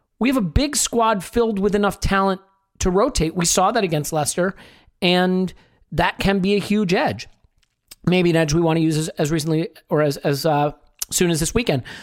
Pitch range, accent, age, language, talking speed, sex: 145-190 Hz, American, 40-59, English, 205 wpm, male